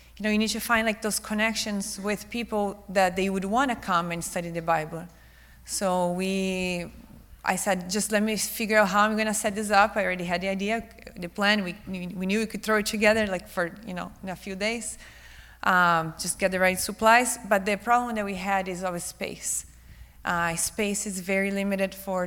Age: 30-49